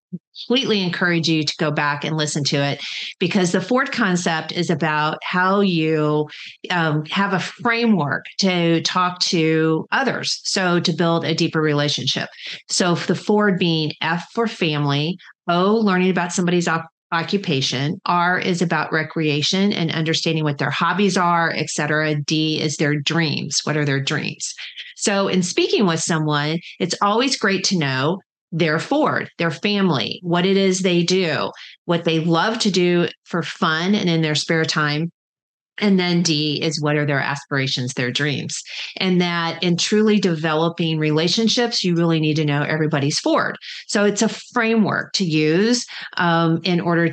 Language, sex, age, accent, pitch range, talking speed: English, female, 40-59, American, 155-190 Hz, 165 wpm